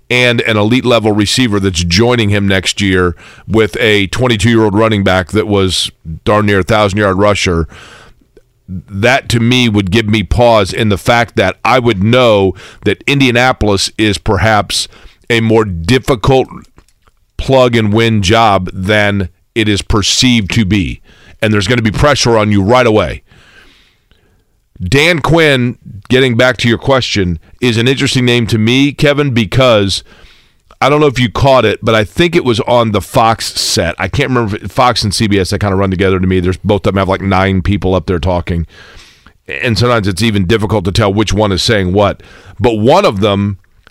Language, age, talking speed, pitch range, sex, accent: English, 40-59, 180 wpm, 100-120 Hz, male, American